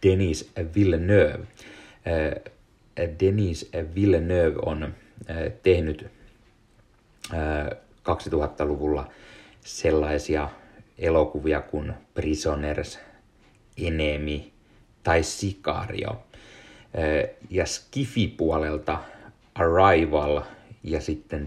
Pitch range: 75-100 Hz